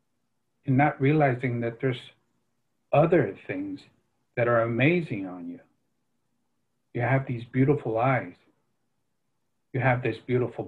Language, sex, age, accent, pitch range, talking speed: English, male, 50-69, American, 120-140 Hz, 120 wpm